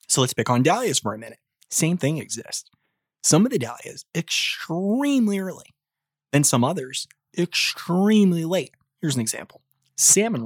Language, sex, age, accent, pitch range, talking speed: English, male, 20-39, American, 135-200 Hz, 150 wpm